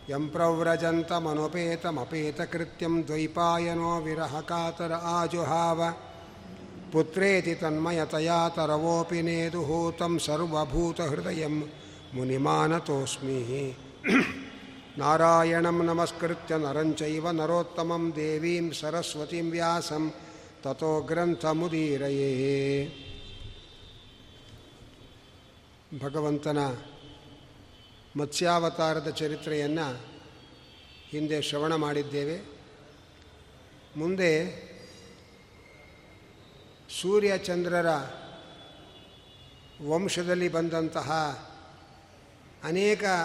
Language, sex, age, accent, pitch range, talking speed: Kannada, male, 50-69, native, 140-170 Hz, 40 wpm